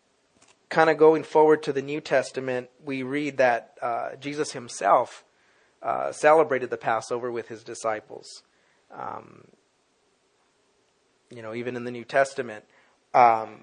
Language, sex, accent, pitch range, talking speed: English, male, American, 120-140 Hz, 130 wpm